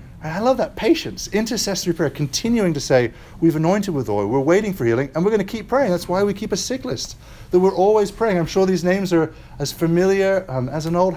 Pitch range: 115-180 Hz